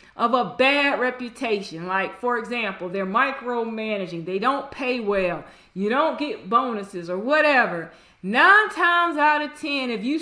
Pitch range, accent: 240-310 Hz, American